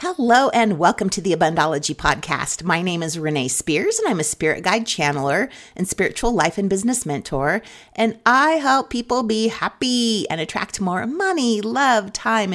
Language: English